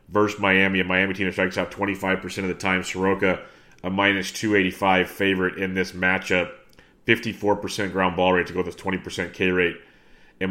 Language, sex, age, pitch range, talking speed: English, male, 30-49, 95-105 Hz, 175 wpm